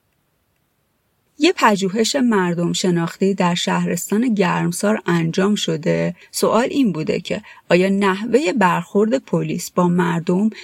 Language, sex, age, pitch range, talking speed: Persian, female, 30-49, 175-210 Hz, 105 wpm